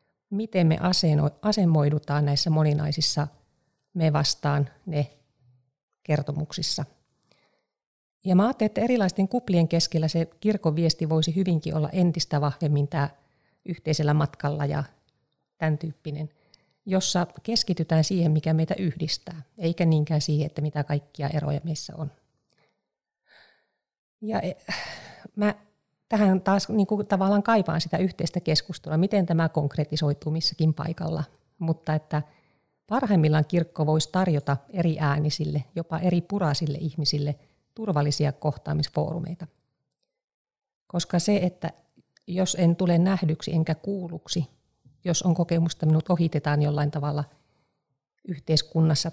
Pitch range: 150-175 Hz